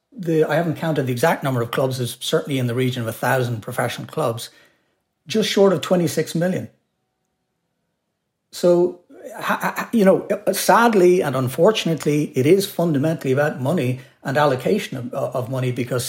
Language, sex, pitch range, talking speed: English, male, 125-160 Hz, 150 wpm